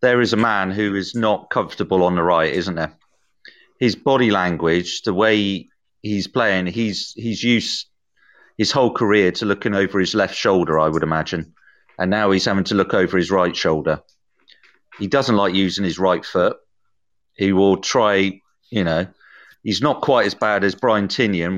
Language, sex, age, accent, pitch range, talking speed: English, male, 40-59, British, 90-105 Hz, 185 wpm